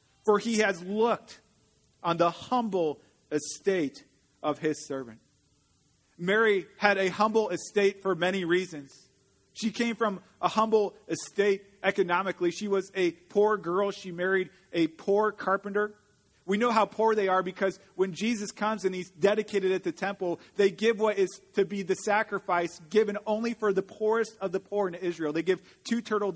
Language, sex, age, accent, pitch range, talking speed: English, male, 40-59, American, 170-205 Hz, 170 wpm